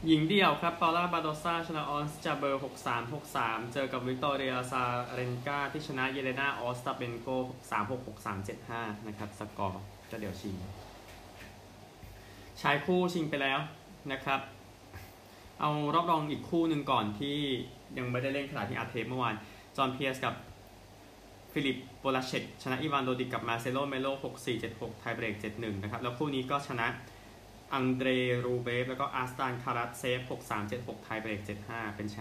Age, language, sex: 20-39, Thai, male